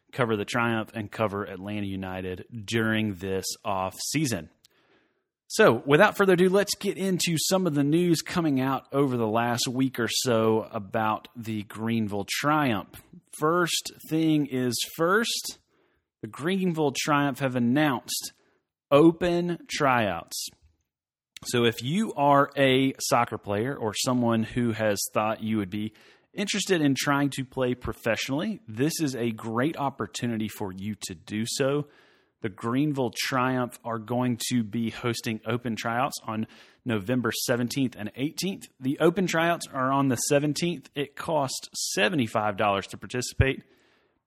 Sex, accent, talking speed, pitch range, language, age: male, American, 140 wpm, 110-140 Hz, English, 30-49